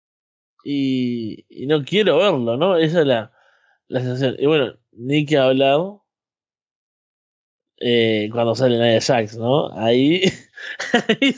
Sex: male